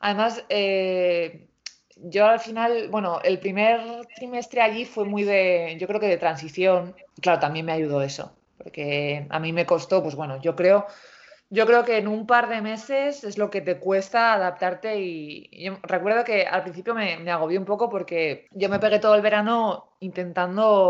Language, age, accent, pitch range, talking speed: English, 20-39, Spanish, 170-220 Hz, 190 wpm